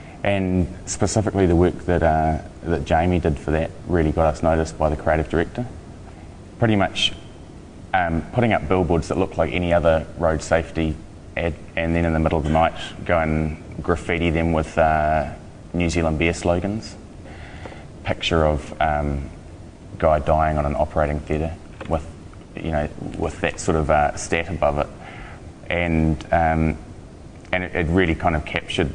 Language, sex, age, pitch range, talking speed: English, male, 20-39, 80-85 Hz, 165 wpm